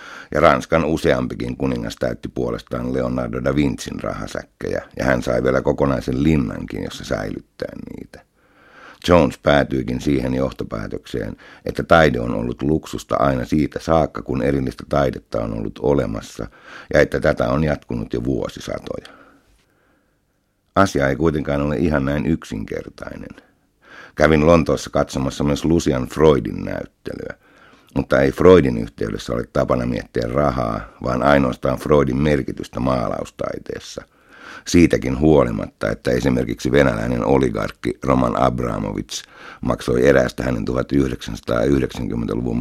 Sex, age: male, 60-79